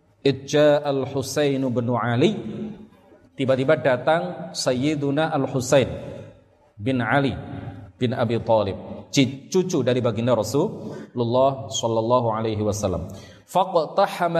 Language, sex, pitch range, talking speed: Indonesian, male, 120-160 Hz, 90 wpm